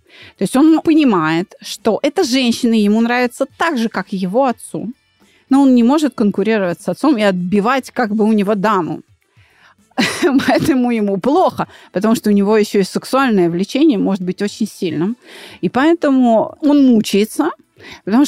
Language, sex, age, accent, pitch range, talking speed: Russian, female, 30-49, native, 195-265 Hz, 160 wpm